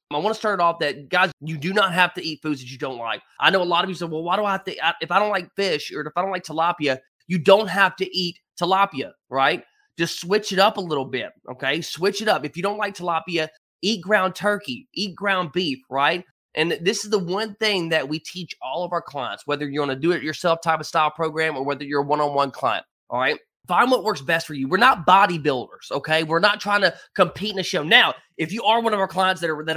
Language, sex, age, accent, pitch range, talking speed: English, male, 20-39, American, 150-190 Hz, 265 wpm